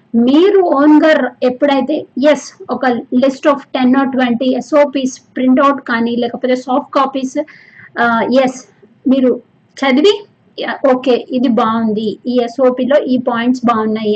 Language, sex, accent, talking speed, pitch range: Telugu, female, native, 120 wpm, 235-275 Hz